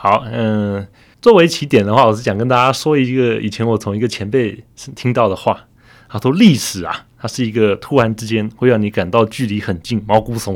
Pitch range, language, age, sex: 105-135 Hz, Chinese, 20-39, male